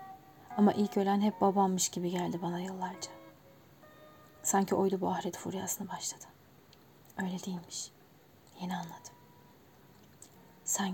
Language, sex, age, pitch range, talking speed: Turkish, female, 30-49, 185-210 Hz, 110 wpm